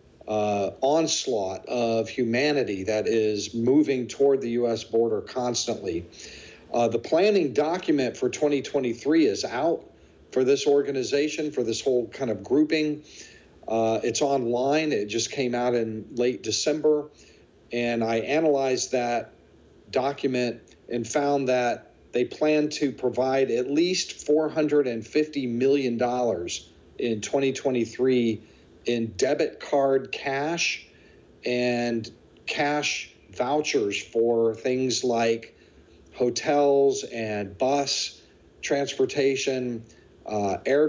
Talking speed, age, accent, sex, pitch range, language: 105 wpm, 50-69, American, male, 115-145 Hz, English